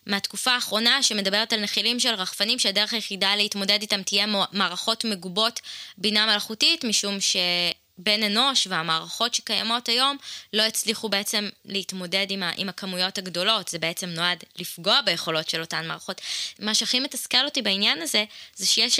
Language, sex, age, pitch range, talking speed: Hebrew, female, 20-39, 190-230 Hz, 140 wpm